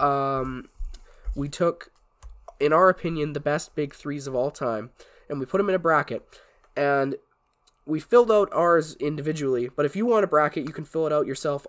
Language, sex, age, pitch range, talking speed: English, male, 20-39, 125-155 Hz, 195 wpm